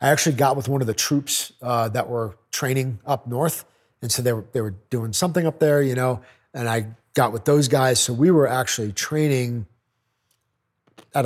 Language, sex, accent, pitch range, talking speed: English, male, American, 110-135 Hz, 205 wpm